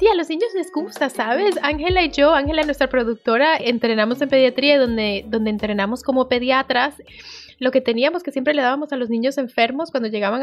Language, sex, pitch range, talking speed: Spanish, female, 215-280 Hz, 195 wpm